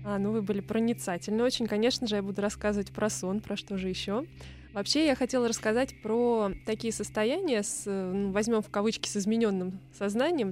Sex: female